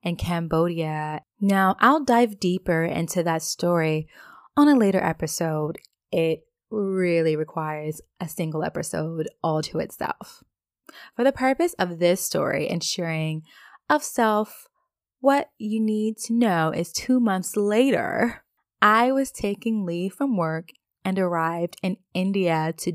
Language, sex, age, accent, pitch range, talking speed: English, female, 20-39, American, 165-215 Hz, 135 wpm